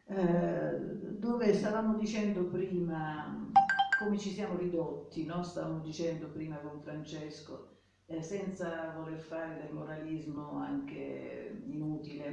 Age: 50-69